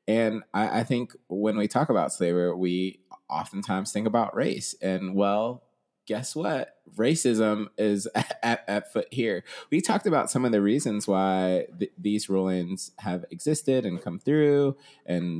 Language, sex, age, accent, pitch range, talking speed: English, male, 30-49, American, 90-125 Hz, 165 wpm